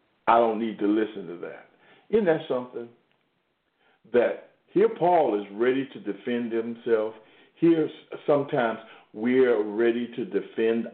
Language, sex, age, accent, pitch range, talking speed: English, male, 50-69, American, 105-130 Hz, 135 wpm